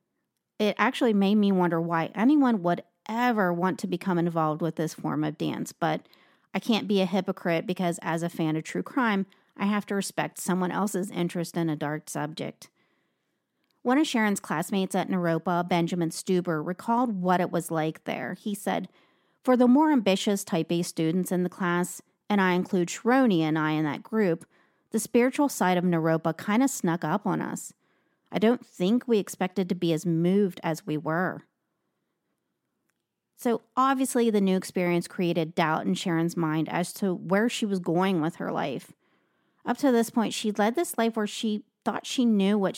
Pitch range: 170-215 Hz